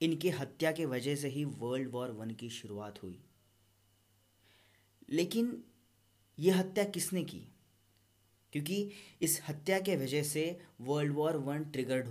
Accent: native